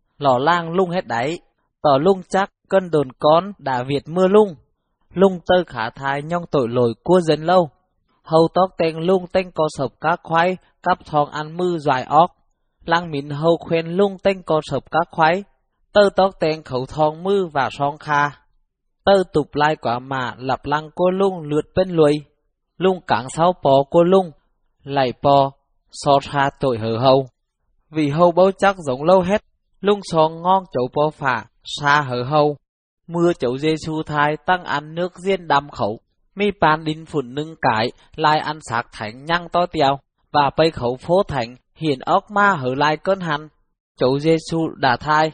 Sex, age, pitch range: male, 20-39, 140-180 Hz